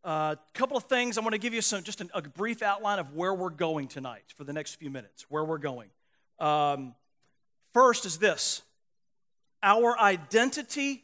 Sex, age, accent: male, 40-59, American